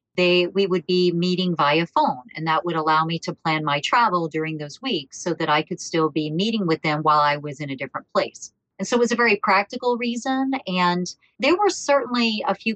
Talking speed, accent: 230 wpm, American